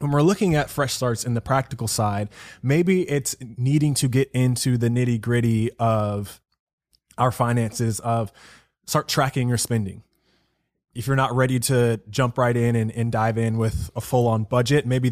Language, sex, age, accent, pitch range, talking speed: English, male, 20-39, American, 115-140 Hz, 180 wpm